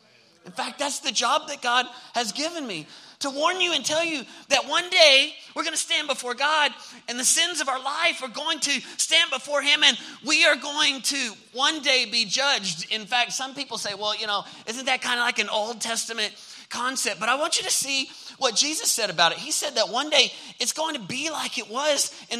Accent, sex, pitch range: American, male, 230-300 Hz